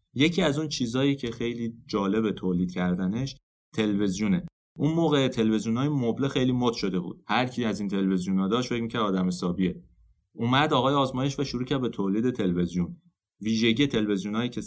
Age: 30-49